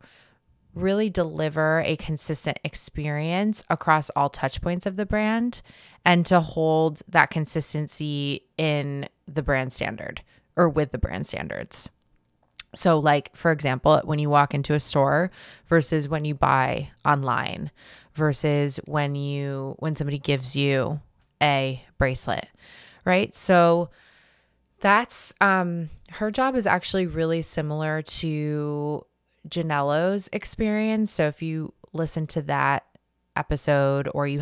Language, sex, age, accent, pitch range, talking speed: English, female, 20-39, American, 140-165 Hz, 125 wpm